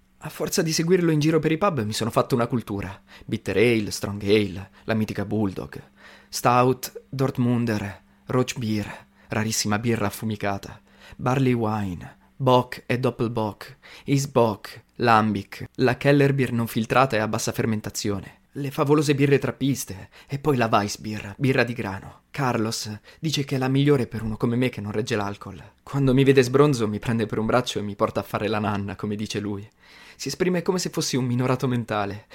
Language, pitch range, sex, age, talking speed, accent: Italian, 105-135 Hz, male, 20-39, 180 wpm, native